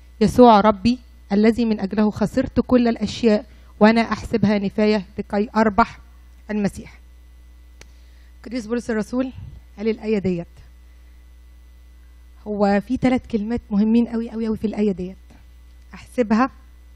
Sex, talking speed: female, 115 wpm